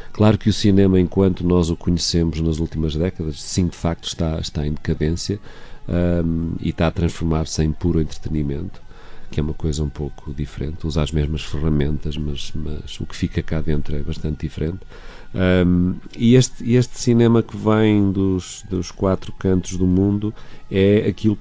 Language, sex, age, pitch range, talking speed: Portuguese, male, 40-59, 80-95 Hz, 170 wpm